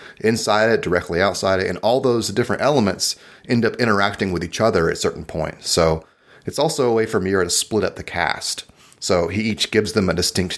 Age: 30-49